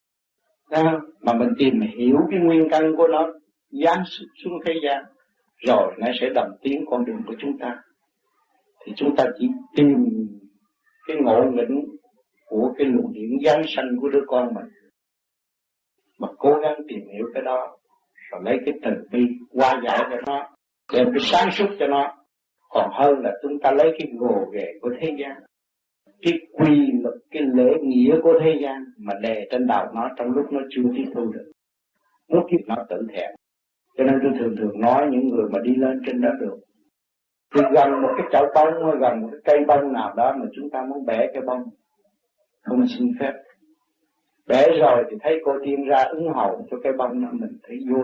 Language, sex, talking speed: Vietnamese, male, 190 wpm